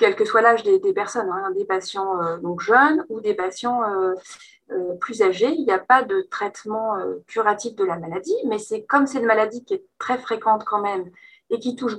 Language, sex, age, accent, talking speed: French, female, 20-39, French, 230 wpm